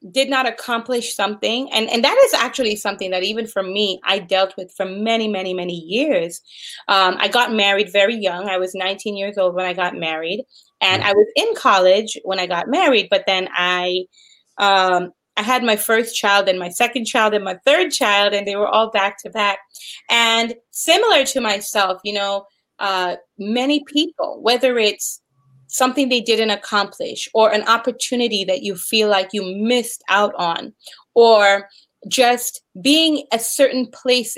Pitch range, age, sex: 190-240 Hz, 30-49, female